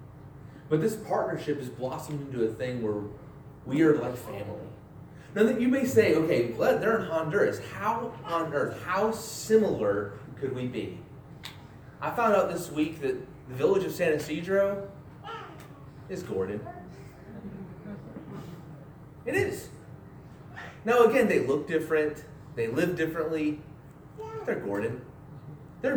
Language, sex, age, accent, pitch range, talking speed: English, male, 30-49, American, 135-180 Hz, 130 wpm